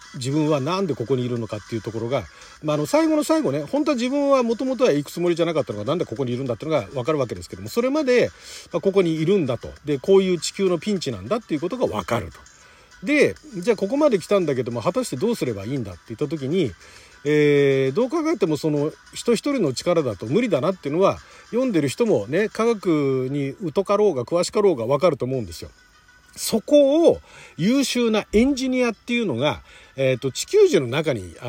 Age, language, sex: 40-59, Japanese, male